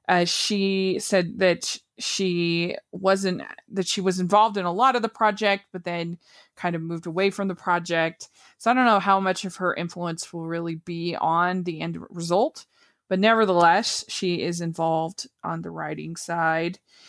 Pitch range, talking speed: 175-225 Hz, 175 wpm